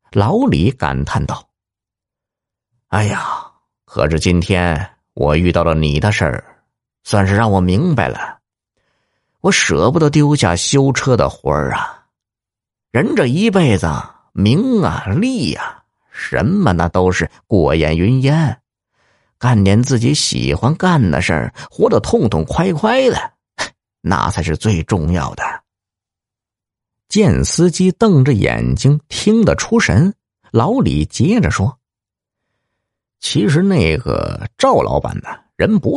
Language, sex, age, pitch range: Chinese, male, 50-69, 85-125 Hz